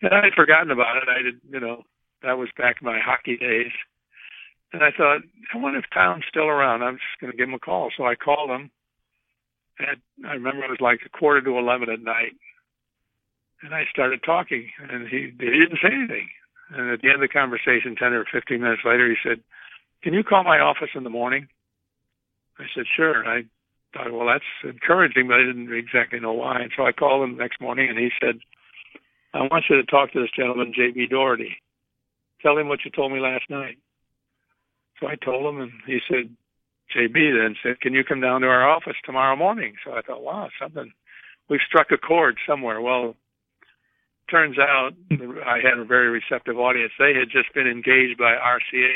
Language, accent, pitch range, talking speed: English, American, 120-135 Hz, 205 wpm